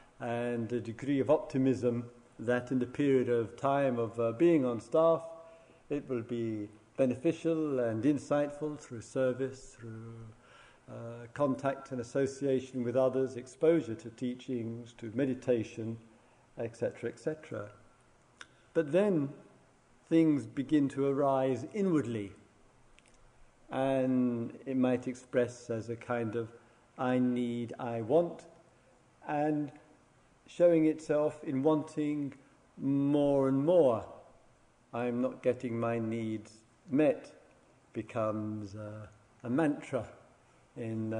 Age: 50-69